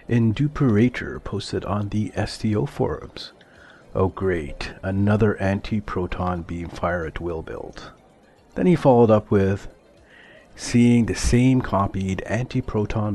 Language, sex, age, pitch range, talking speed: English, male, 50-69, 95-115 Hz, 120 wpm